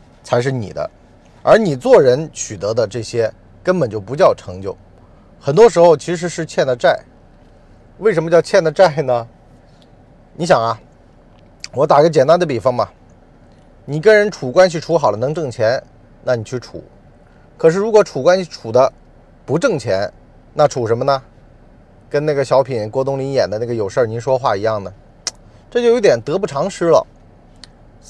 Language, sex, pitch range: Chinese, male, 125-200 Hz